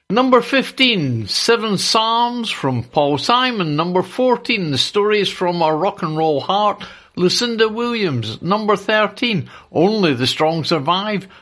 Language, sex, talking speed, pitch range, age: English, male, 130 wpm, 155-215 Hz, 60-79